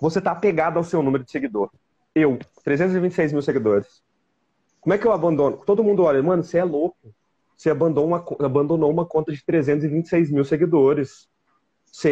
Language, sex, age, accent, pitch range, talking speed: Portuguese, male, 30-49, Brazilian, 150-210 Hz, 170 wpm